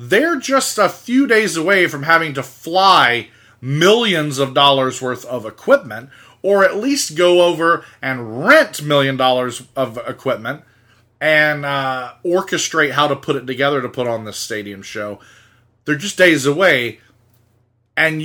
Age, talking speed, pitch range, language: 30-49, 150 wpm, 120-165 Hz, English